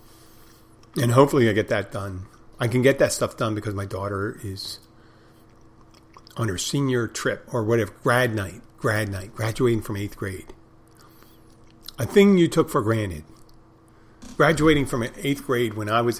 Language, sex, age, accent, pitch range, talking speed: English, male, 50-69, American, 105-115 Hz, 160 wpm